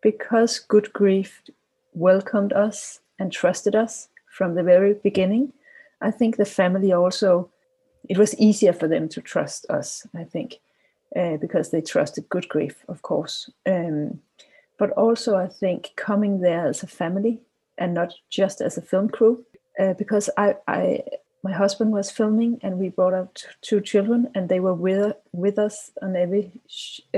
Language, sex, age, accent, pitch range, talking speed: English, female, 30-49, Danish, 185-220 Hz, 165 wpm